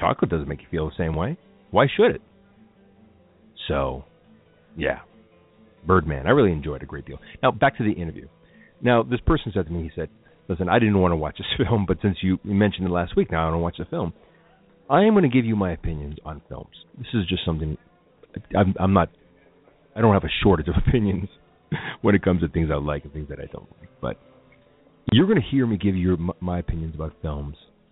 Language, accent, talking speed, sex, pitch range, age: English, American, 225 wpm, male, 85-110 Hz, 40-59